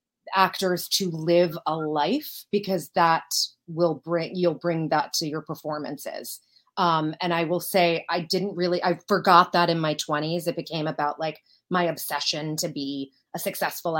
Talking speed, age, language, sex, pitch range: 165 wpm, 30-49, English, female, 160-205 Hz